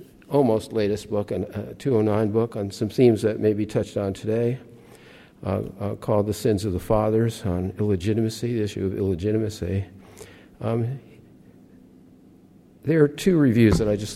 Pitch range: 100-115 Hz